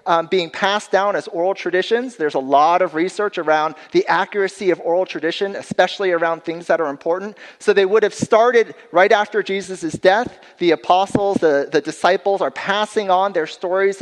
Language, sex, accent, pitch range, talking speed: English, male, American, 175-215 Hz, 185 wpm